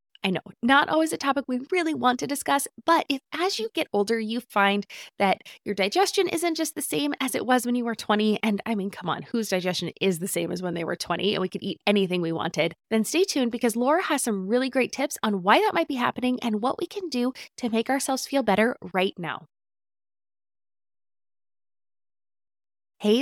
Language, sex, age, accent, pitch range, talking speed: English, female, 20-39, American, 190-275 Hz, 215 wpm